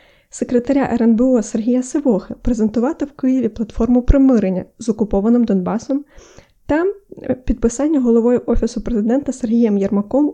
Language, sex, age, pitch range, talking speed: Ukrainian, female, 20-39, 225-275 Hz, 110 wpm